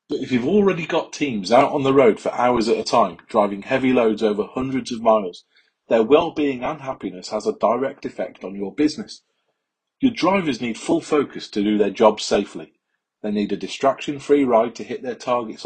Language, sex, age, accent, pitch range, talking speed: English, male, 30-49, British, 105-140 Hz, 200 wpm